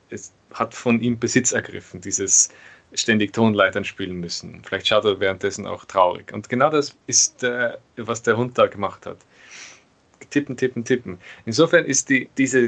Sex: male